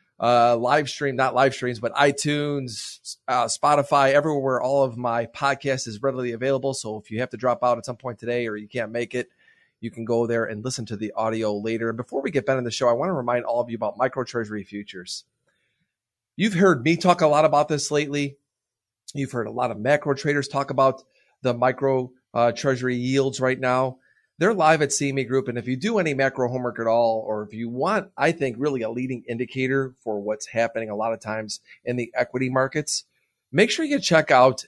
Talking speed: 220 wpm